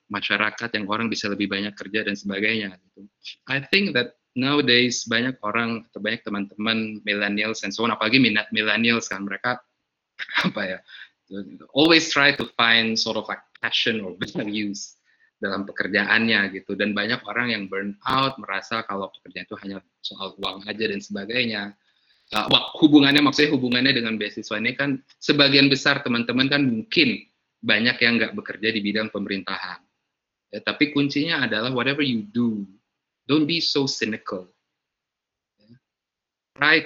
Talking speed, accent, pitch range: 145 wpm, native, 105-125 Hz